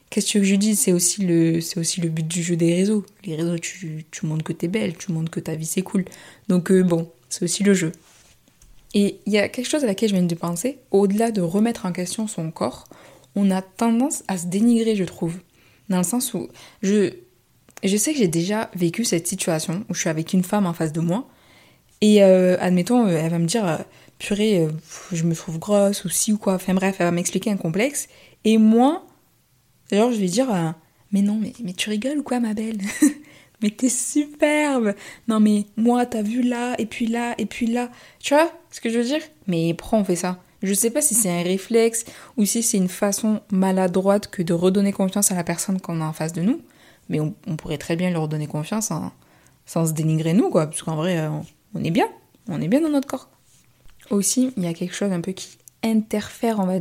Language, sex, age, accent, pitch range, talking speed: French, female, 20-39, French, 175-220 Hz, 230 wpm